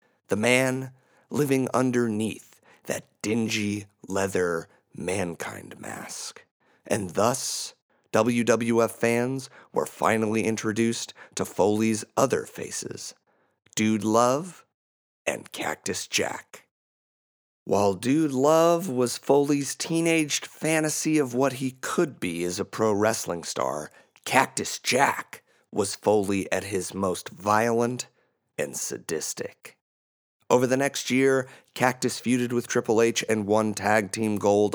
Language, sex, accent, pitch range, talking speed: English, male, American, 100-125 Hz, 115 wpm